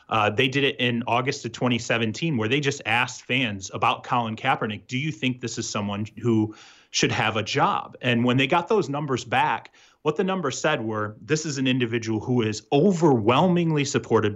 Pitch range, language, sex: 115-145 Hz, English, male